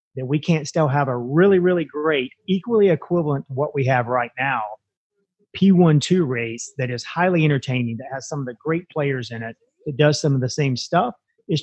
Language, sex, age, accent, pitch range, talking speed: English, male, 30-49, American, 130-160 Hz, 205 wpm